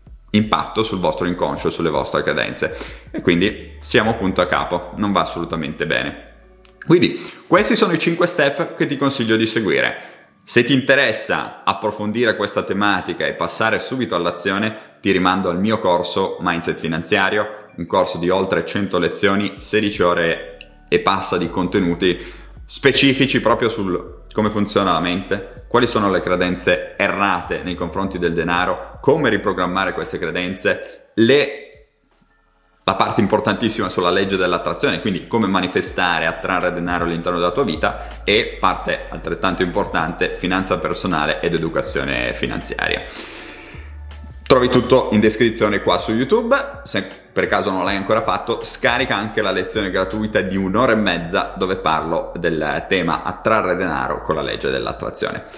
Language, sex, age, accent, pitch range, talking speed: Italian, male, 30-49, native, 90-130 Hz, 145 wpm